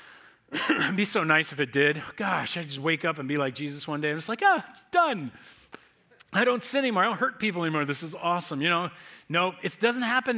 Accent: American